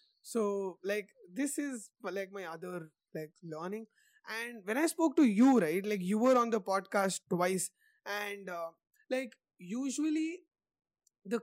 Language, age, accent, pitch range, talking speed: English, 20-39, Indian, 185-245 Hz, 145 wpm